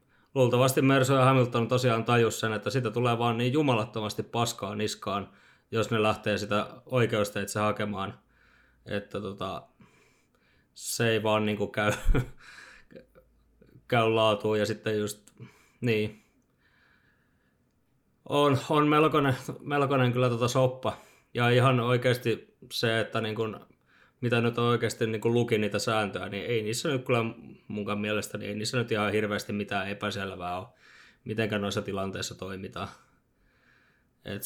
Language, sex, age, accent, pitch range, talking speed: Finnish, male, 20-39, native, 105-125 Hz, 135 wpm